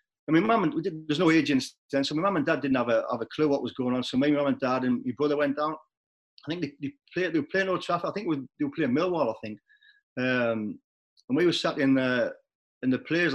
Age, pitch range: 40-59, 130-175 Hz